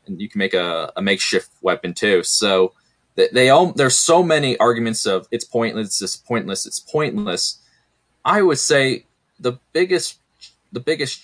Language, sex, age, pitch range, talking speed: English, male, 20-39, 95-125 Hz, 160 wpm